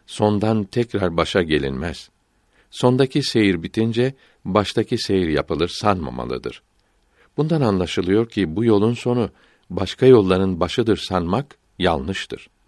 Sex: male